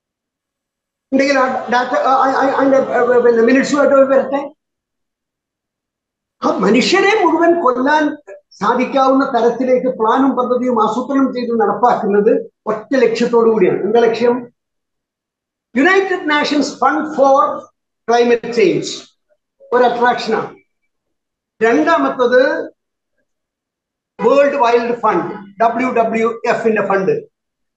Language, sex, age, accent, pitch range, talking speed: Malayalam, male, 50-69, native, 225-285 Hz, 65 wpm